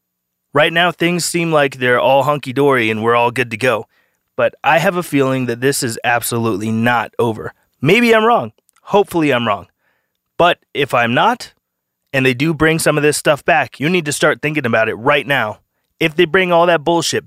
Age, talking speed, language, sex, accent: 30-49, 205 wpm, English, male, American